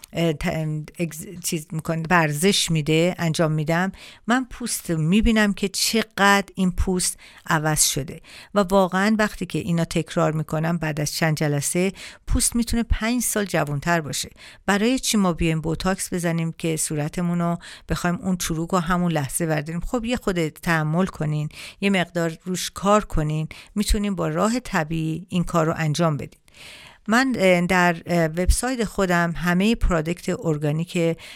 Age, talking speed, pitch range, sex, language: 50-69, 140 wpm, 160-195 Hz, female, Persian